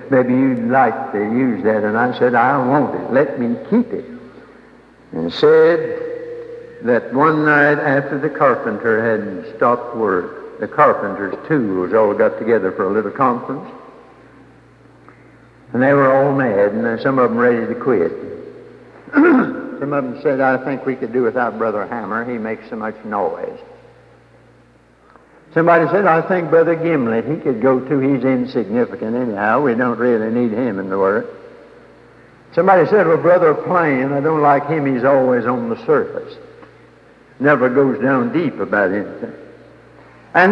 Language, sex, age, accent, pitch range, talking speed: English, male, 60-79, American, 125-195 Hz, 160 wpm